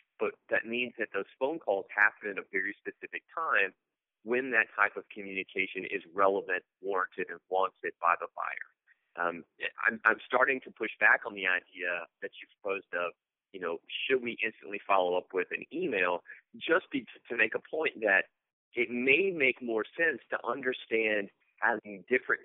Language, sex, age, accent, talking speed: English, male, 30-49, American, 175 wpm